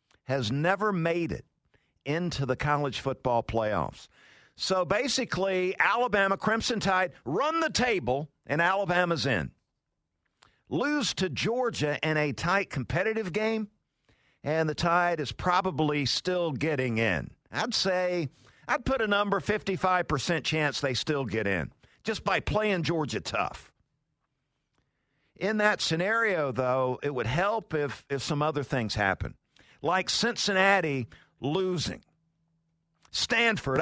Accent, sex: American, male